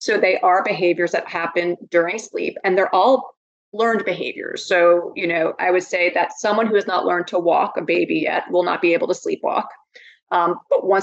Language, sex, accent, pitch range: English, female, American, 175-210 Hz